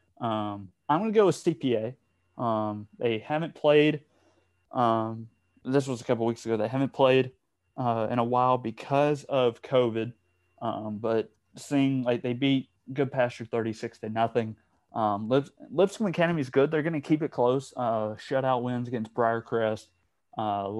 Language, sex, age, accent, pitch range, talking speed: English, male, 20-39, American, 110-125 Hz, 175 wpm